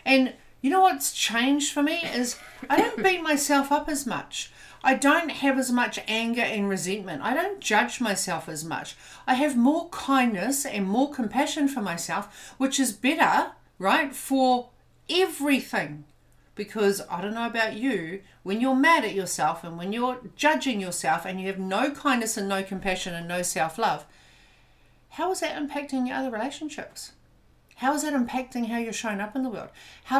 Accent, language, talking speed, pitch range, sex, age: Australian, English, 180 wpm, 180-270 Hz, female, 50-69